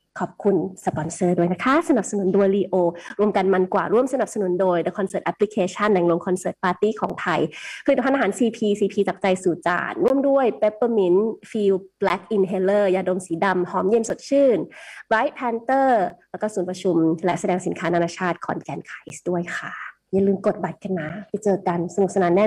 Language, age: Thai, 20-39